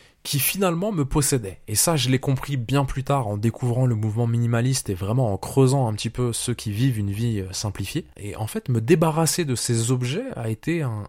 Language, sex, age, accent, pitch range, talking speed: French, male, 20-39, French, 110-140 Hz, 220 wpm